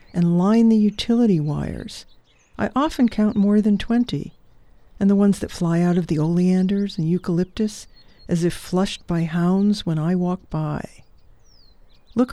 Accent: American